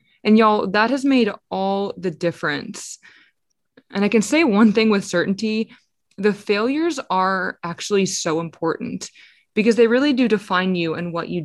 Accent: American